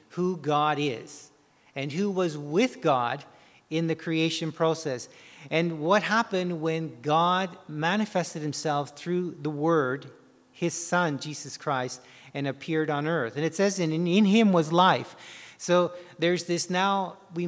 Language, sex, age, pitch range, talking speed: English, male, 40-59, 155-195 Hz, 150 wpm